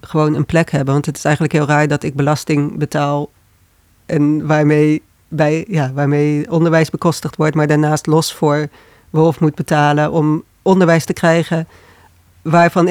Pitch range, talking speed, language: 150-180 Hz, 150 wpm, Dutch